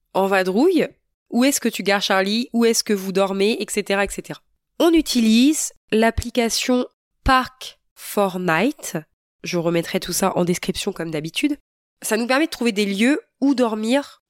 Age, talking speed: 20-39, 150 wpm